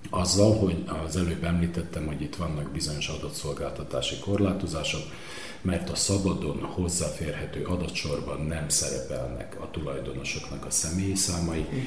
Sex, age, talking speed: male, 40-59, 115 wpm